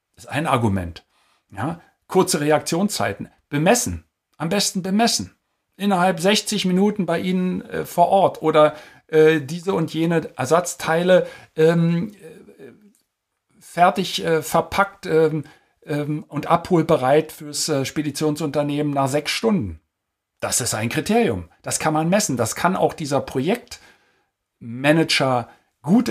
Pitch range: 145-180 Hz